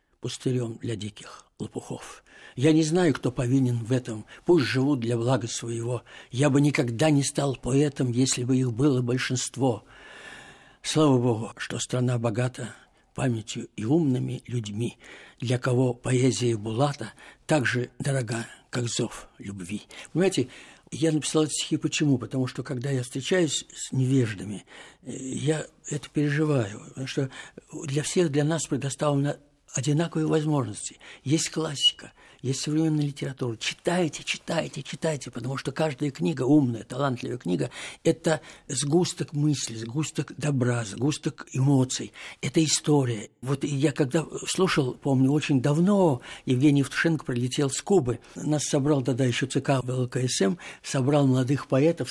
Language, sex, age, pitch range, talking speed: Russian, male, 60-79, 125-155 Hz, 130 wpm